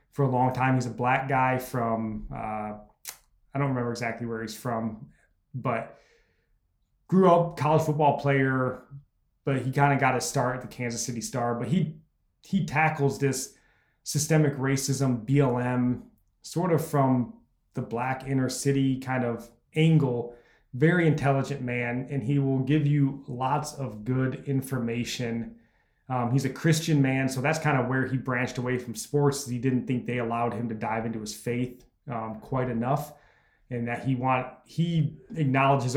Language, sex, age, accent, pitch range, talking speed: English, male, 20-39, American, 120-140 Hz, 165 wpm